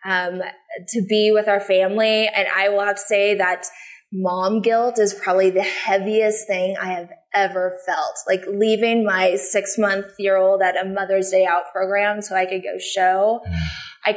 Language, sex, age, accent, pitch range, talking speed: English, female, 20-39, American, 190-230 Hz, 180 wpm